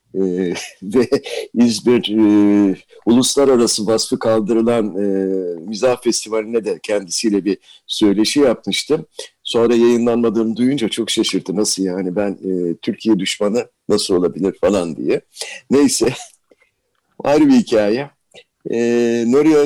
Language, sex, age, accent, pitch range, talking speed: Turkish, male, 60-79, native, 110-150 Hz, 110 wpm